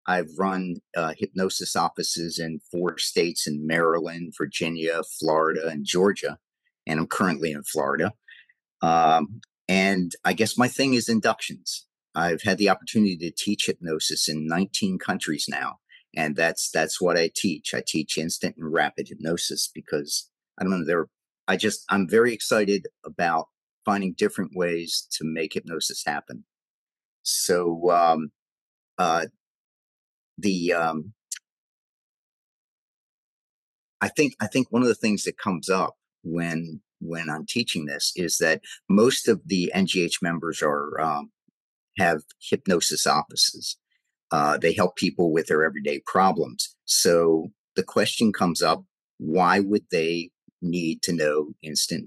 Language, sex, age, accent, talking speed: English, male, 50-69, American, 140 wpm